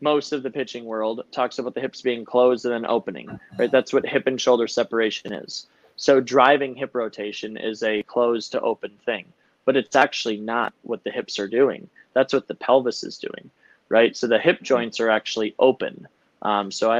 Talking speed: 205 wpm